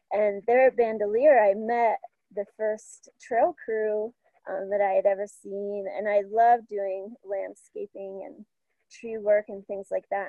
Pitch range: 205-245 Hz